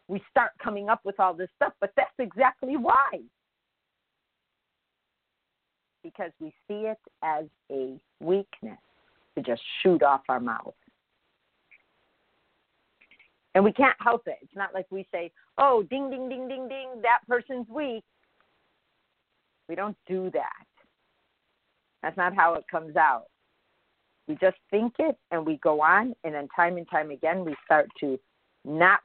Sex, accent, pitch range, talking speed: female, American, 165-235 Hz, 150 wpm